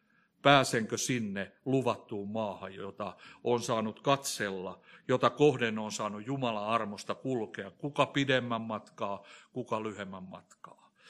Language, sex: Finnish, male